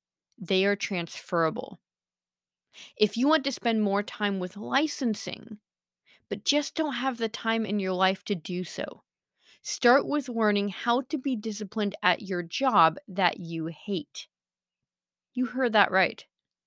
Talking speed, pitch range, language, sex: 150 wpm, 190-255 Hz, English, female